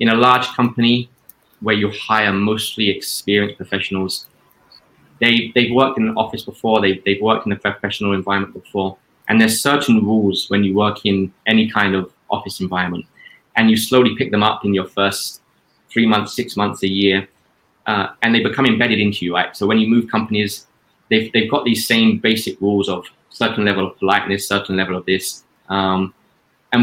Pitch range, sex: 95-110 Hz, male